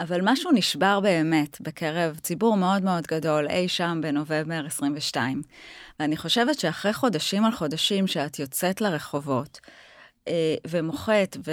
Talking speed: 120 wpm